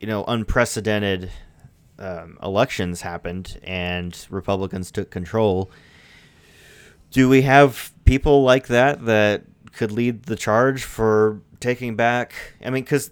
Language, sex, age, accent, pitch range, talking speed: English, male, 30-49, American, 95-120 Hz, 125 wpm